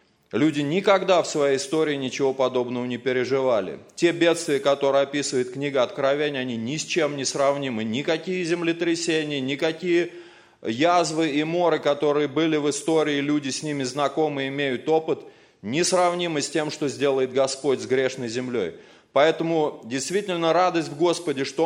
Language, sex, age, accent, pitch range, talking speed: Russian, male, 30-49, native, 145-175 Hz, 145 wpm